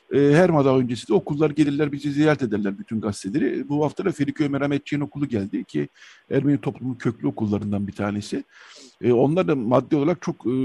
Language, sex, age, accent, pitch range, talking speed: Turkish, male, 60-79, native, 120-150 Hz, 165 wpm